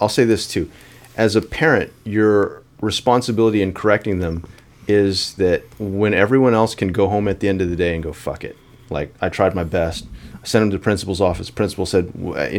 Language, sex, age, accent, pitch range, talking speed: English, male, 30-49, American, 95-130 Hz, 215 wpm